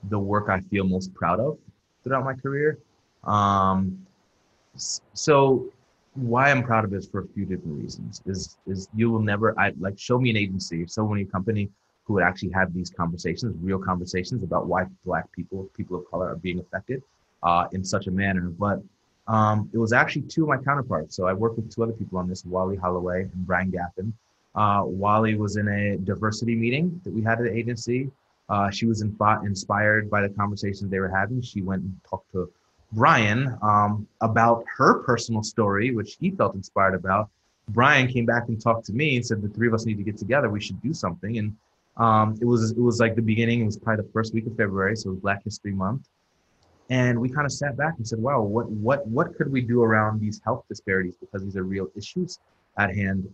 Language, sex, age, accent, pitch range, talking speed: English, male, 30-49, American, 95-115 Hz, 215 wpm